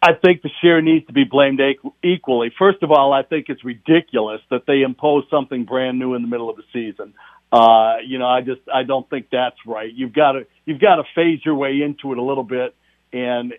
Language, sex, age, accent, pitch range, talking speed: English, male, 60-79, American, 130-160 Hz, 235 wpm